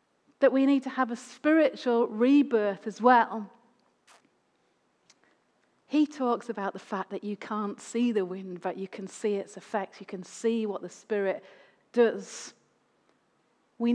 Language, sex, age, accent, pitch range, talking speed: English, female, 40-59, British, 230-285 Hz, 150 wpm